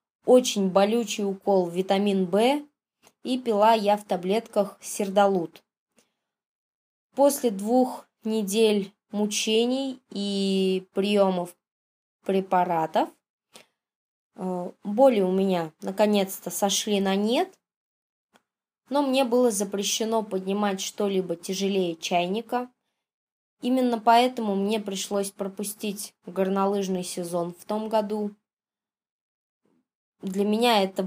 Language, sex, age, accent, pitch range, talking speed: Russian, female, 20-39, native, 190-225 Hz, 90 wpm